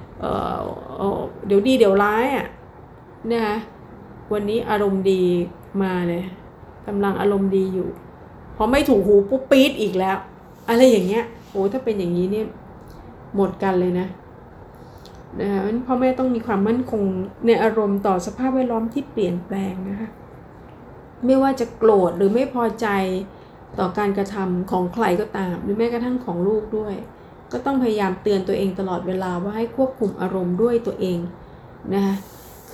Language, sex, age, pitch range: Thai, female, 30-49, 190-230 Hz